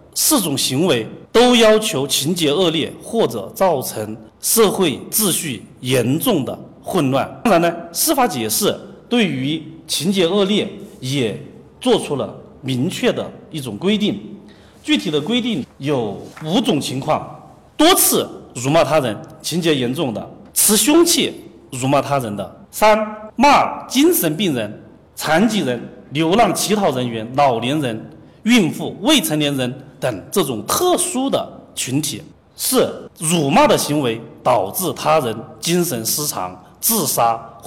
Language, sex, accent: Chinese, male, native